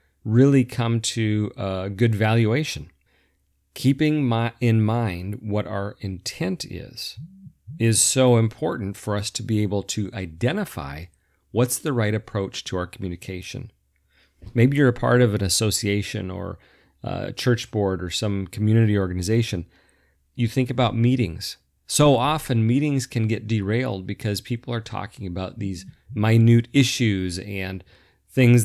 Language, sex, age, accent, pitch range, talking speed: English, male, 40-59, American, 95-125 Hz, 135 wpm